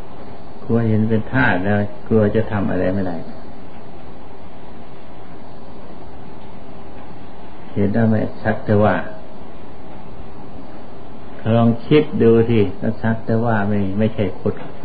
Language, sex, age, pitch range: Thai, male, 60-79, 100-115 Hz